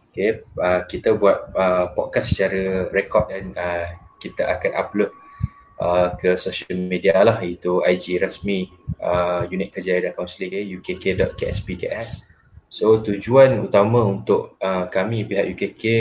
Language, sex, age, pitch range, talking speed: Malay, male, 20-39, 90-100 Hz, 130 wpm